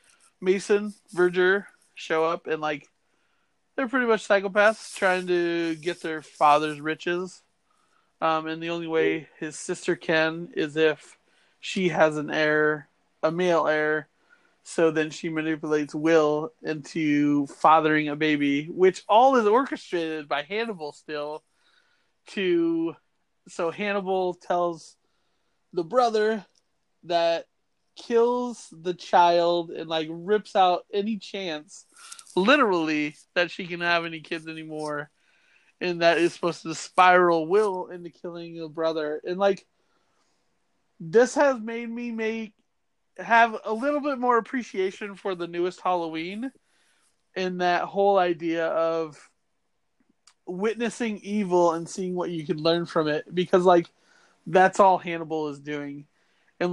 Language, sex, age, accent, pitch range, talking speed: English, male, 20-39, American, 160-210 Hz, 130 wpm